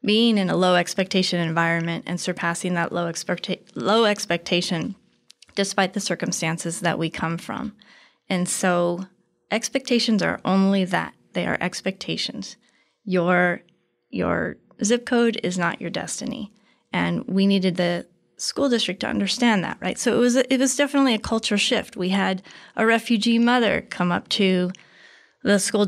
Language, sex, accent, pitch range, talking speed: English, female, American, 180-220 Hz, 155 wpm